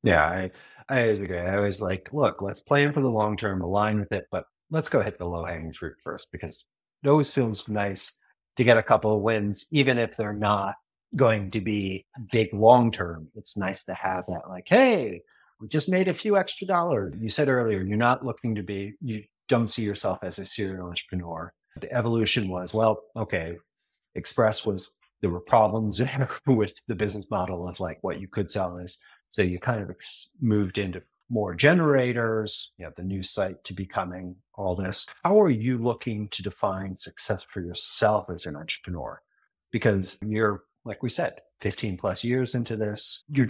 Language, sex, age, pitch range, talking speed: English, male, 30-49, 95-120 Hz, 190 wpm